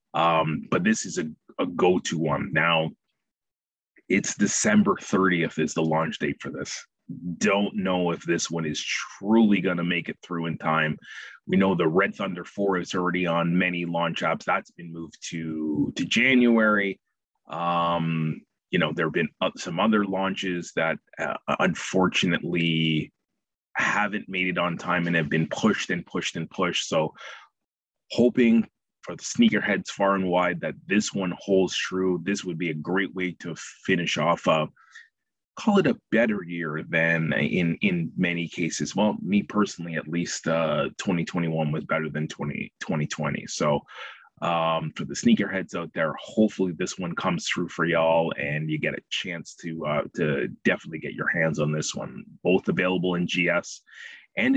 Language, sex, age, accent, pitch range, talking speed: English, male, 30-49, American, 80-95 Hz, 170 wpm